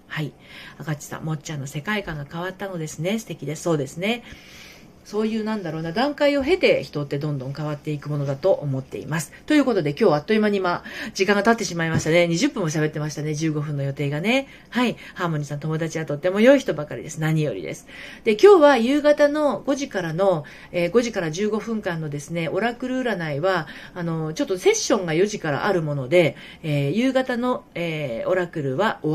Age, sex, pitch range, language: 40-59, female, 150-220 Hz, Japanese